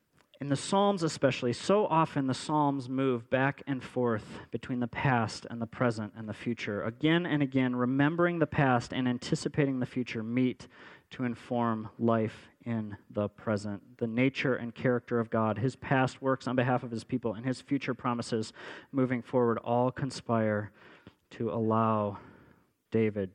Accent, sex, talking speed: American, male, 160 wpm